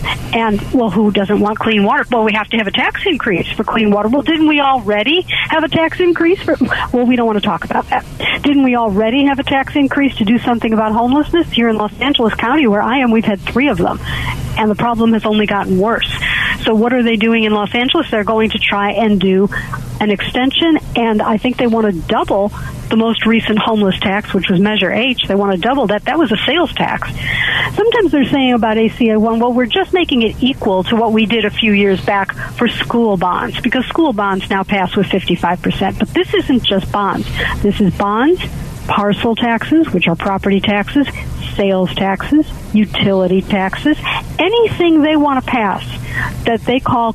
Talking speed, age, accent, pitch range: 210 wpm, 50-69, American, 205-260 Hz